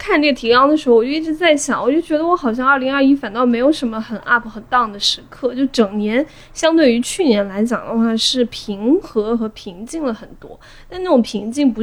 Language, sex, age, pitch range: Chinese, female, 20-39, 220-270 Hz